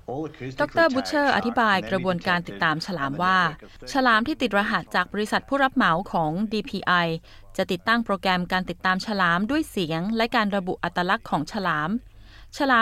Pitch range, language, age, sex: 180-235 Hz, Thai, 20-39, female